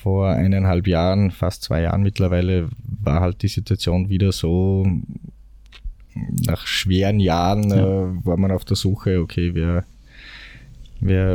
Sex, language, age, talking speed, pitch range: male, German, 20-39, 130 wpm, 85-95 Hz